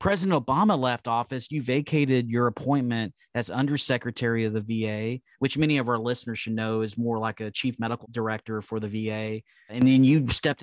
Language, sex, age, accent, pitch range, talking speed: English, male, 30-49, American, 110-145 Hz, 190 wpm